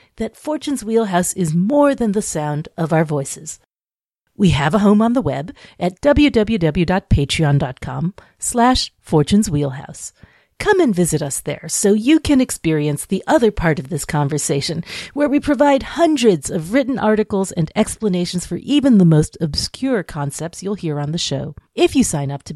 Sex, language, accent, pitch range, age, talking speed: female, English, American, 160-235 Hz, 40-59, 170 wpm